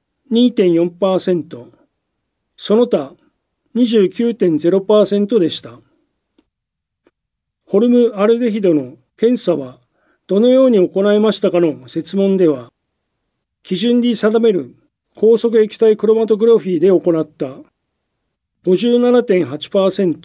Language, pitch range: Japanese, 170-230 Hz